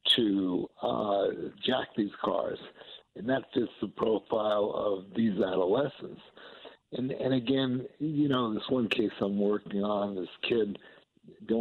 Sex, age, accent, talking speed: male, 60-79, American, 140 wpm